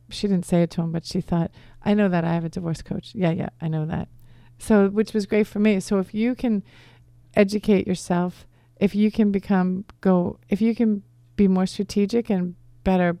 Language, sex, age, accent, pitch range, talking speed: English, female, 40-59, American, 165-195 Hz, 215 wpm